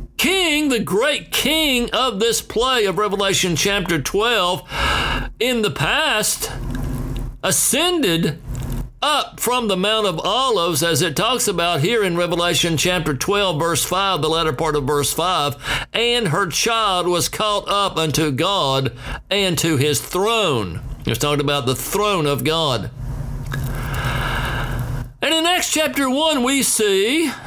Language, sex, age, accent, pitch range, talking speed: English, male, 60-79, American, 150-235 Hz, 140 wpm